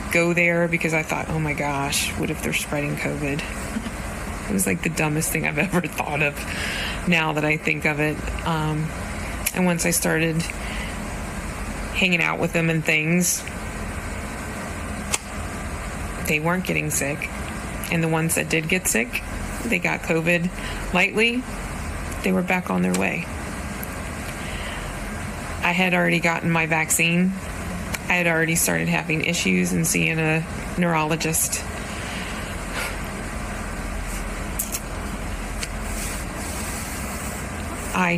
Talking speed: 125 wpm